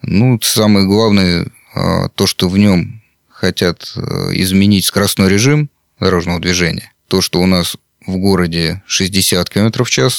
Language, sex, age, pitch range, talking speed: Russian, male, 30-49, 90-105 Hz, 135 wpm